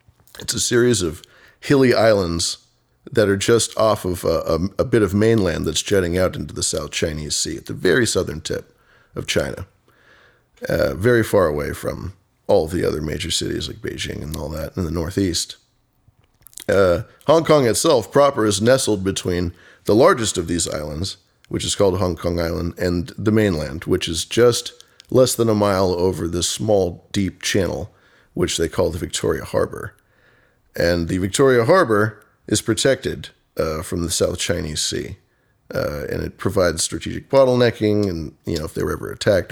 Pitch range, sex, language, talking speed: 85-110 Hz, male, English, 175 wpm